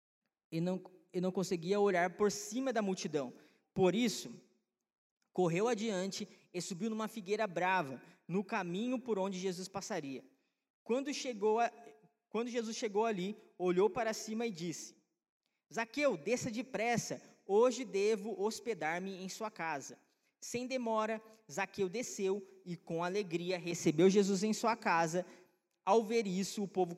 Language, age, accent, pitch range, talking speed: Portuguese, 20-39, Brazilian, 180-225 Hz, 135 wpm